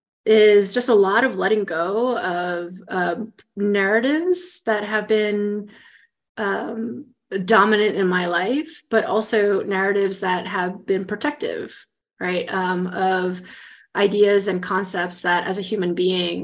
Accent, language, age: American, English, 30-49